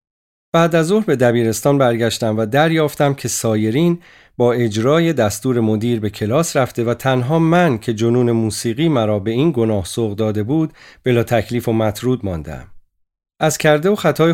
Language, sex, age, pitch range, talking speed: Persian, male, 40-59, 110-145 Hz, 165 wpm